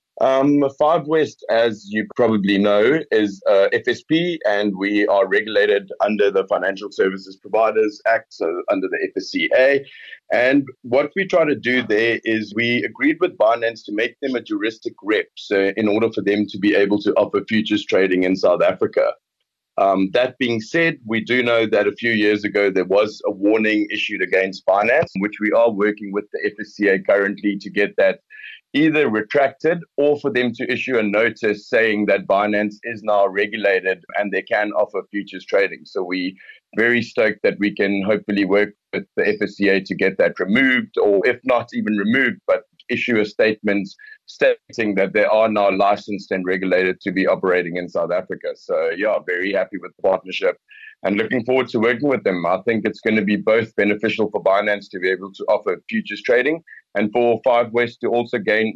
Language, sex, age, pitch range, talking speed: English, male, 30-49, 100-135 Hz, 190 wpm